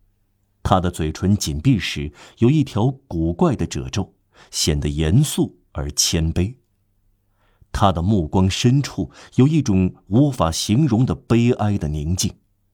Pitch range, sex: 90-115 Hz, male